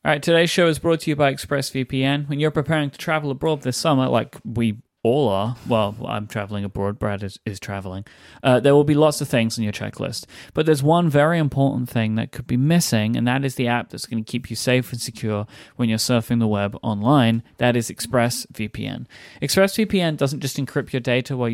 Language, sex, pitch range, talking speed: English, male, 115-150 Hz, 220 wpm